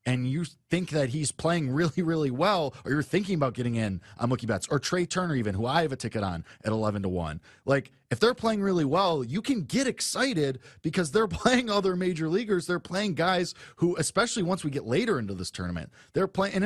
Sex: male